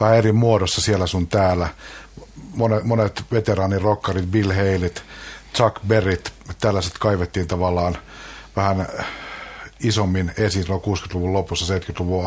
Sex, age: male, 50-69